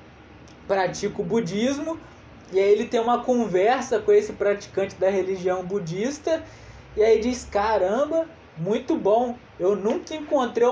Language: Portuguese